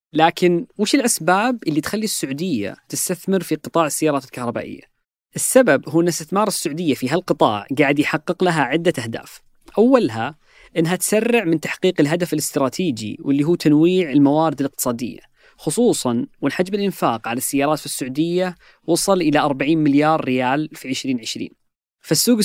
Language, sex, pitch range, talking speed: Arabic, female, 150-195 Hz, 135 wpm